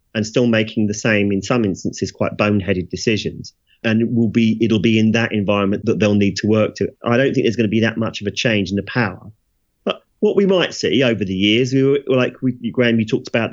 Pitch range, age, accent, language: 95-115 Hz, 30-49, British, English